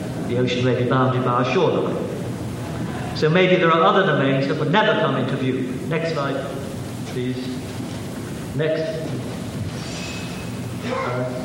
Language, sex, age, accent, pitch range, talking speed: English, male, 50-69, British, 130-165 Hz, 130 wpm